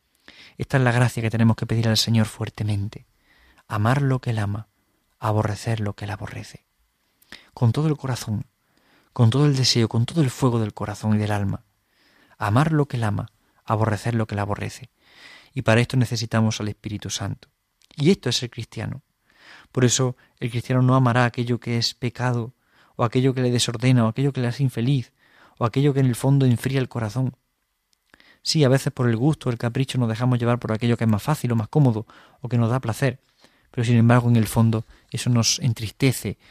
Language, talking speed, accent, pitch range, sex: Spanish, 205 wpm, Spanish, 110-130 Hz, male